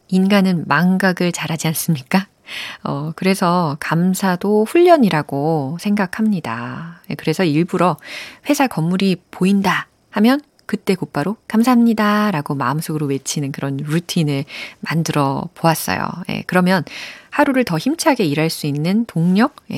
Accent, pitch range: native, 155-215 Hz